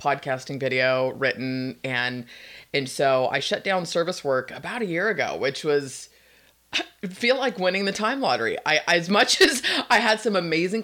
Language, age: English, 30-49